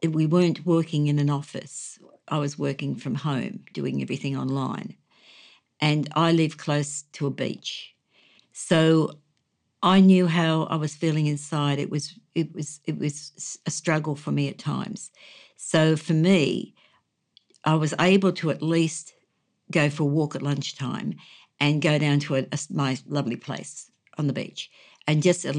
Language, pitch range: English, 145-165 Hz